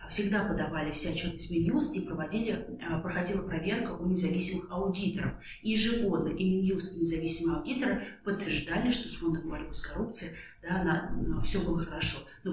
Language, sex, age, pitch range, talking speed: Russian, female, 30-49, 165-195 Hz, 165 wpm